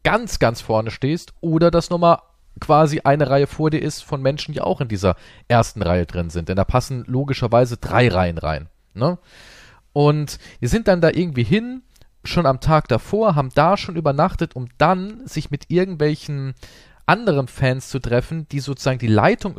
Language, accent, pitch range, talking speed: German, German, 115-165 Hz, 180 wpm